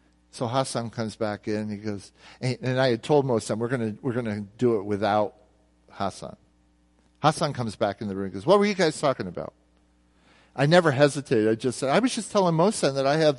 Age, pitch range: 50-69, 100-140 Hz